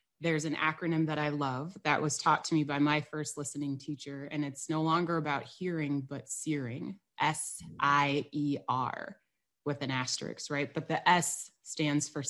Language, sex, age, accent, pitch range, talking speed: English, female, 30-49, American, 145-170 Hz, 165 wpm